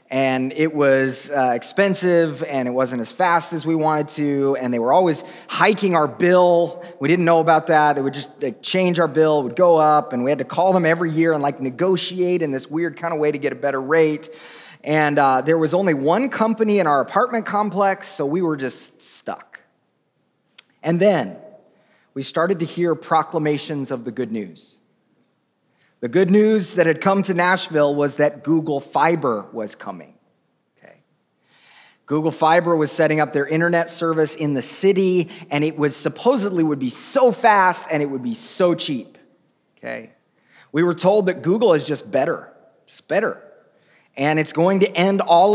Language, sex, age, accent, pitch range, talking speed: English, male, 30-49, American, 150-180 Hz, 185 wpm